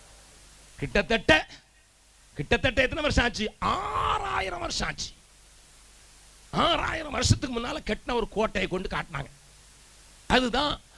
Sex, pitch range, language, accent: male, 190-295 Hz, Tamil, native